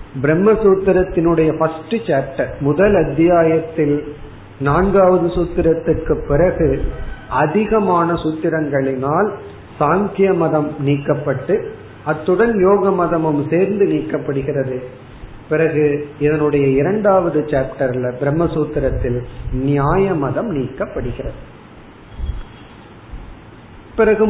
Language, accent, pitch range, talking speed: Tamil, native, 135-180 Hz, 55 wpm